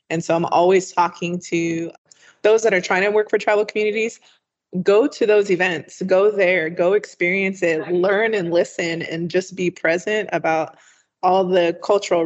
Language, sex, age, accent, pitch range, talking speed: English, female, 20-39, American, 170-205 Hz, 170 wpm